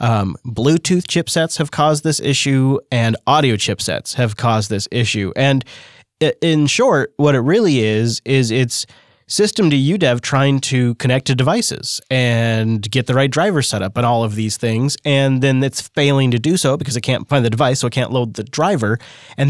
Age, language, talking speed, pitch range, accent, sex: 30-49, English, 195 wpm, 120-145 Hz, American, male